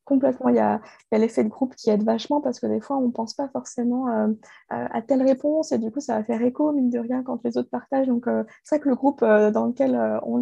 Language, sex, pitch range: French, female, 220-260 Hz